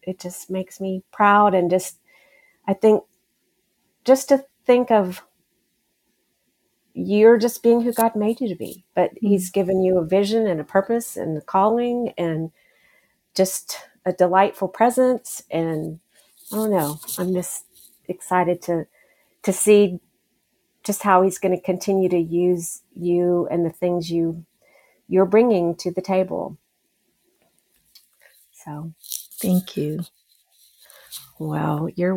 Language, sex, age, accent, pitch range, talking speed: English, female, 50-69, American, 175-215 Hz, 135 wpm